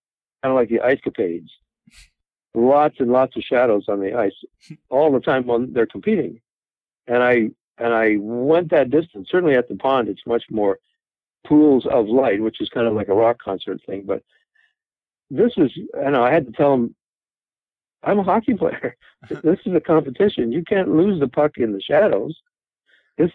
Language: English